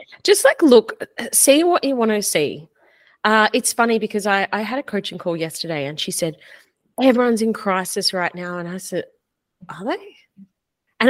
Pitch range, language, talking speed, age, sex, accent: 180-260 Hz, English, 185 wpm, 30-49, female, Australian